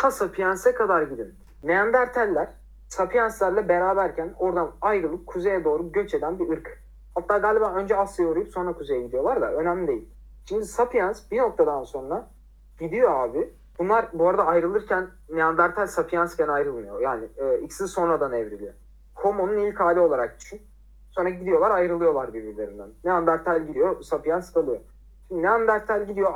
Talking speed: 135 wpm